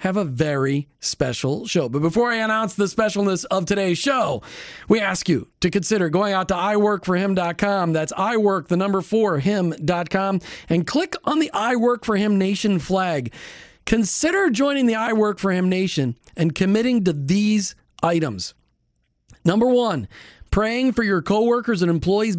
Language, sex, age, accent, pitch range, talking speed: English, male, 40-59, American, 170-225 Hz, 155 wpm